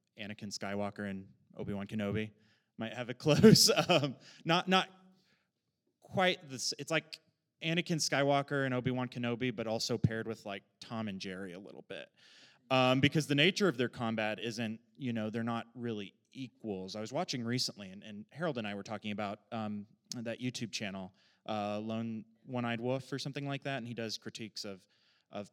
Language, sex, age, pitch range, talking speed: English, male, 30-49, 95-135 Hz, 185 wpm